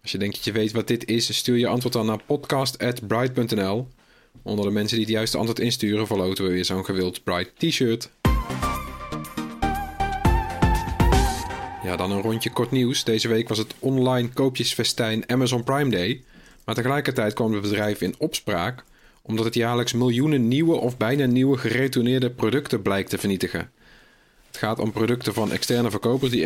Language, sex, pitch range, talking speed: Dutch, male, 110-125 Hz, 165 wpm